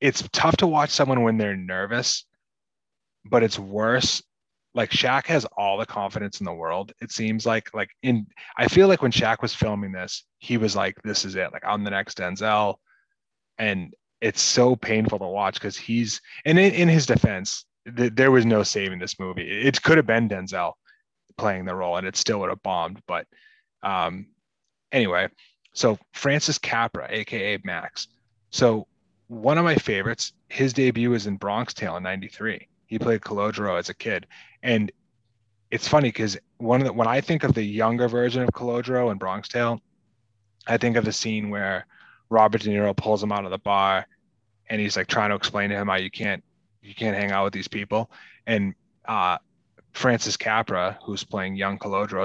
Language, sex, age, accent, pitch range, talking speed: English, male, 20-39, American, 100-120 Hz, 190 wpm